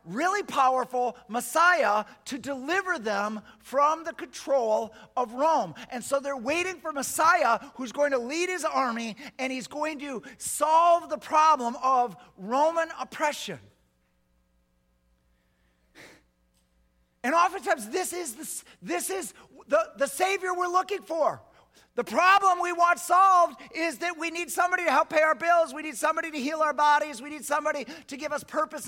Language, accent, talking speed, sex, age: English, American, 150 wpm, male, 40-59